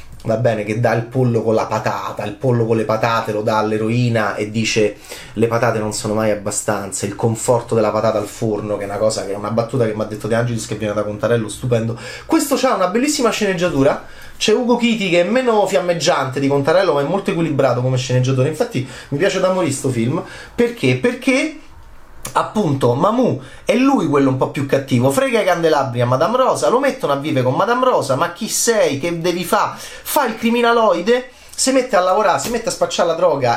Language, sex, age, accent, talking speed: Italian, male, 30-49, native, 215 wpm